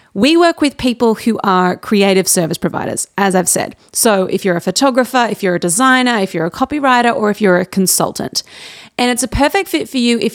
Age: 30-49